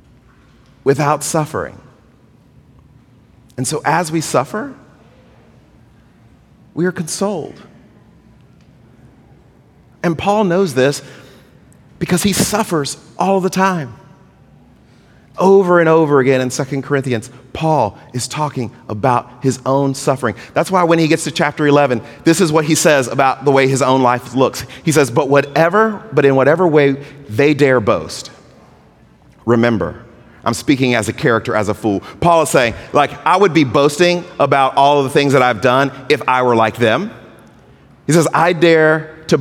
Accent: American